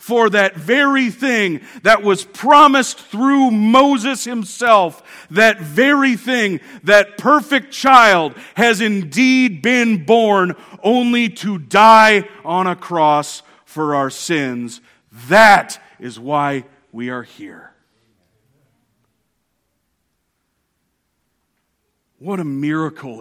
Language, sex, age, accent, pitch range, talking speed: English, male, 40-59, American, 135-220 Hz, 100 wpm